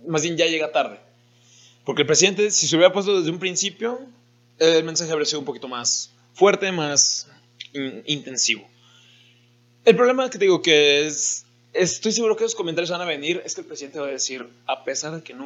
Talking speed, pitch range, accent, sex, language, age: 205 wpm, 120-165 Hz, Mexican, male, Spanish, 20-39